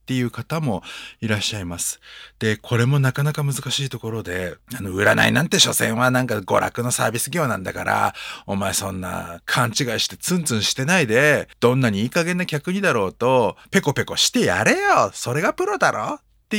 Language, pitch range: Japanese, 110-175 Hz